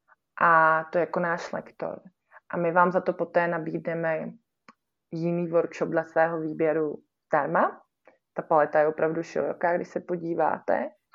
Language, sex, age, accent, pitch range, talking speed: Czech, female, 20-39, native, 165-185 Hz, 140 wpm